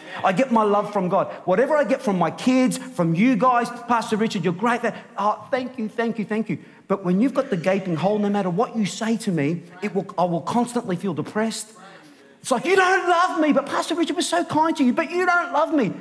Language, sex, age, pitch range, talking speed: English, male, 40-59, 185-260 Hz, 245 wpm